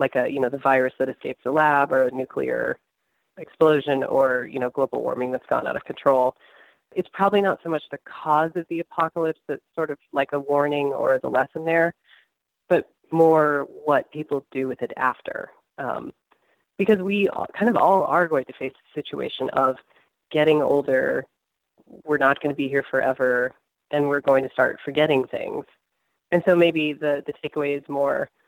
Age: 30-49